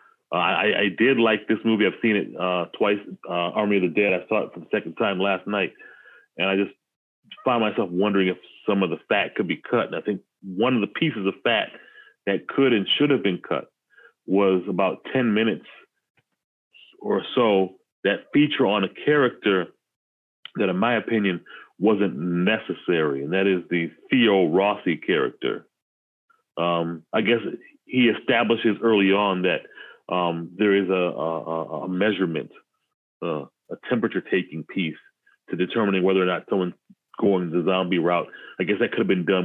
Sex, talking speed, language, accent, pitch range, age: male, 175 wpm, English, American, 90-110 Hz, 30-49